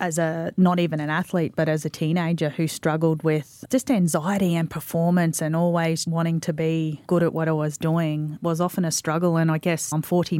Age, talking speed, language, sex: 30-49, 215 wpm, English, female